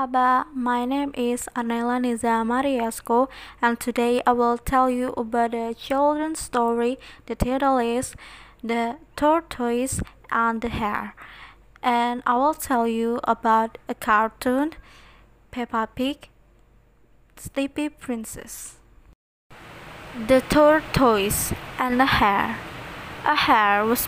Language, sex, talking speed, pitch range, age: English, female, 105 wpm, 230-265 Hz, 20-39